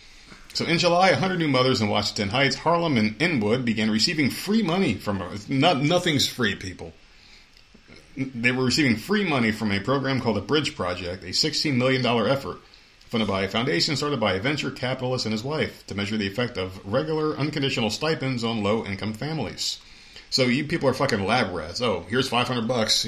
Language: English